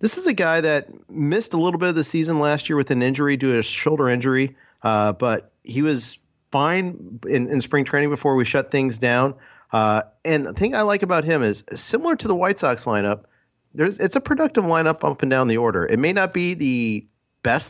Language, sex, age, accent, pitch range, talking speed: English, male, 40-59, American, 105-150 Hz, 225 wpm